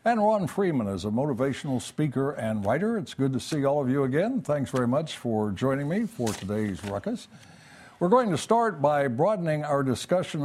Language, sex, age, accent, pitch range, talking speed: English, male, 60-79, American, 120-160 Hz, 195 wpm